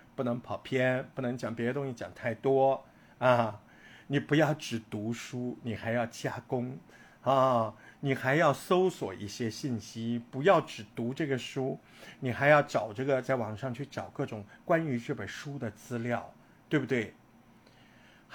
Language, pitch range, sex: Chinese, 115-150 Hz, male